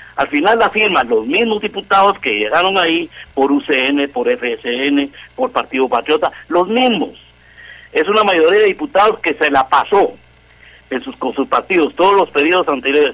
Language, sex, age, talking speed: Spanish, male, 50-69, 170 wpm